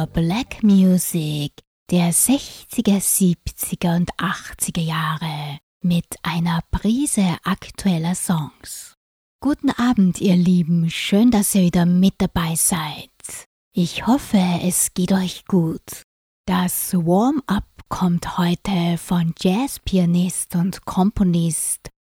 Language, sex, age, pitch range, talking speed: German, female, 20-39, 165-195 Hz, 105 wpm